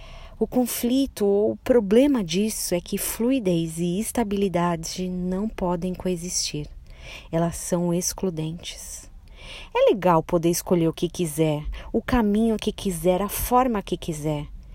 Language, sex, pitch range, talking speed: Portuguese, female, 170-210 Hz, 130 wpm